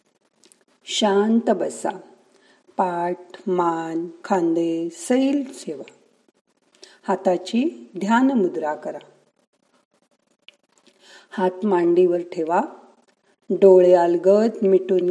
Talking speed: 70 wpm